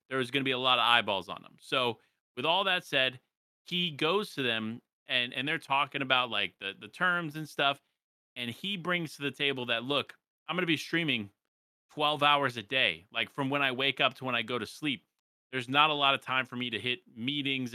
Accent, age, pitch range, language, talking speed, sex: American, 30-49, 125-150 Hz, English, 240 wpm, male